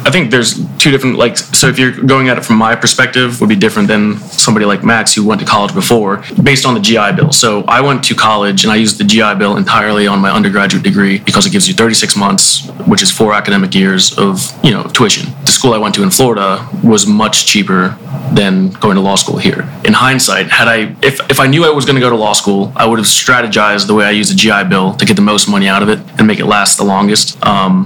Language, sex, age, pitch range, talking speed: English, male, 20-39, 100-120 Hz, 260 wpm